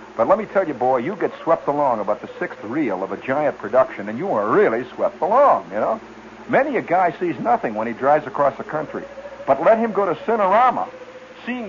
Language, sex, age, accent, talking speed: English, male, 60-79, American, 225 wpm